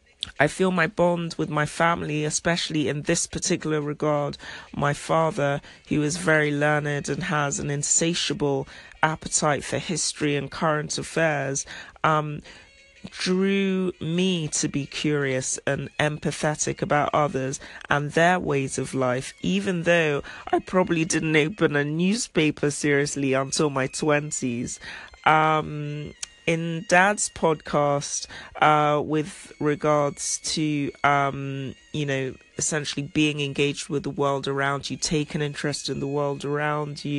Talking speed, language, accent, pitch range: 130 wpm, English, British, 145-165 Hz